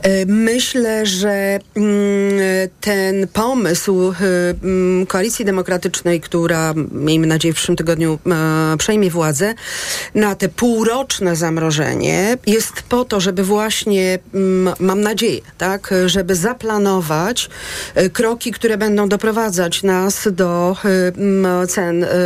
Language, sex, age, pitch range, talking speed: Polish, female, 40-59, 185-215 Hz, 95 wpm